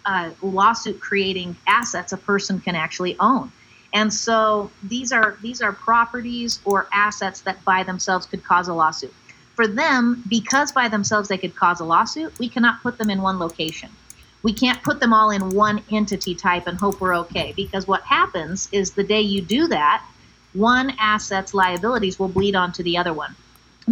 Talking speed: 185 wpm